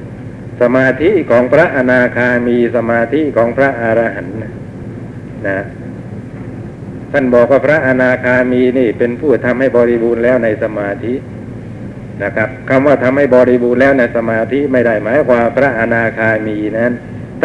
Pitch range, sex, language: 110-130 Hz, male, Thai